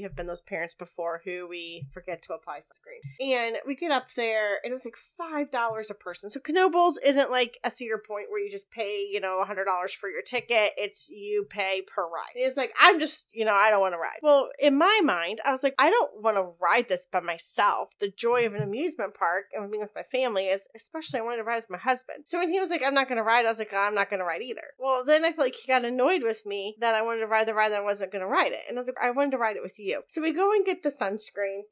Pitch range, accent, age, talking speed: 200-270 Hz, American, 30-49, 290 wpm